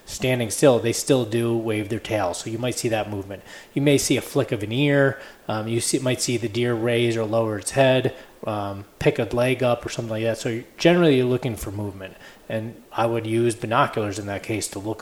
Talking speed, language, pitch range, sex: 240 wpm, English, 110-130 Hz, male